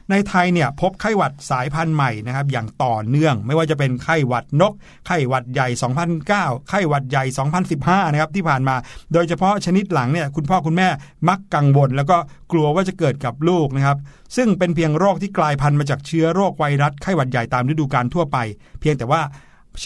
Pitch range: 135-170 Hz